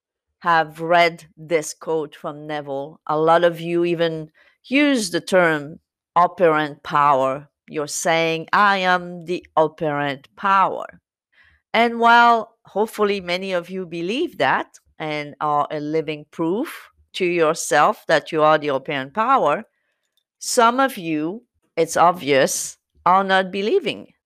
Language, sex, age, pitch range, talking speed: English, female, 40-59, 155-200 Hz, 130 wpm